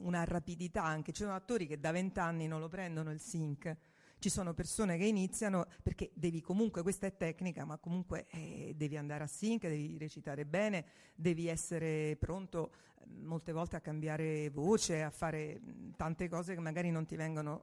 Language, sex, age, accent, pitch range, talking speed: Italian, female, 50-69, native, 160-195 Hz, 180 wpm